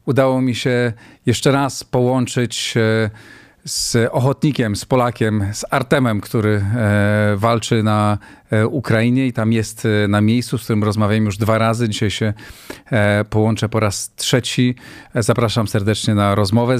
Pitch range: 105-125 Hz